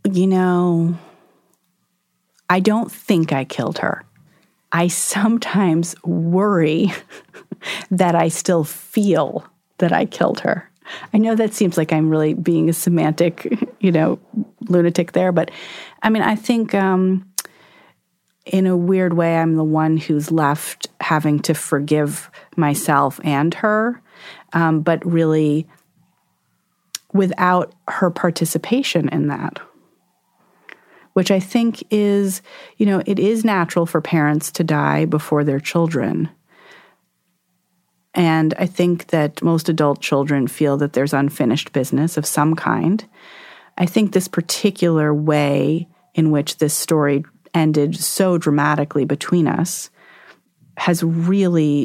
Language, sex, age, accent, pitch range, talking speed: English, female, 30-49, American, 155-185 Hz, 125 wpm